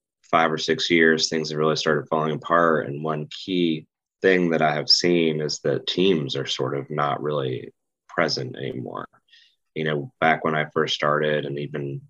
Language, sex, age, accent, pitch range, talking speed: English, male, 20-39, American, 75-80 Hz, 185 wpm